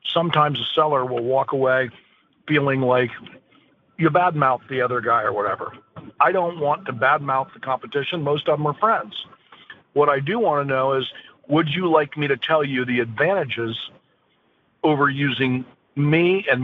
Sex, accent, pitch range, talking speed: male, American, 130-150 Hz, 170 wpm